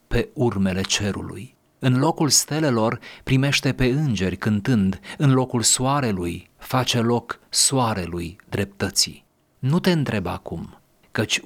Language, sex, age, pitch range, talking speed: Romanian, male, 40-59, 100-130 Hz, 115 wpm